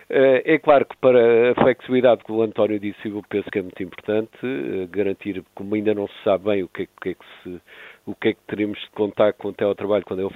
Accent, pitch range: Portuguese, 100-125 Hz